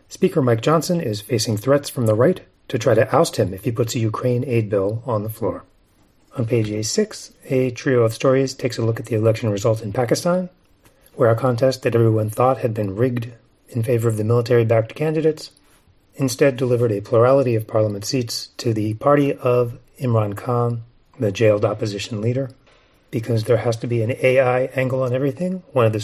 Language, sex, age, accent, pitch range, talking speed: English, male, 40-59, American, 110-135 Hz, 200 wpm